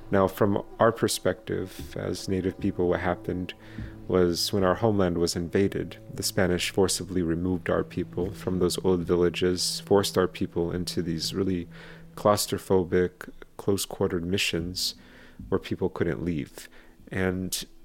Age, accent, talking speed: 40-59, American, 130 wpm